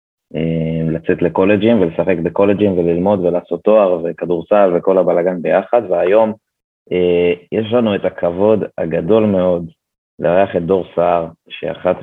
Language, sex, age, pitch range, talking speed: Hebrew, male, 20-39, 85-100 Hz, 120 wpm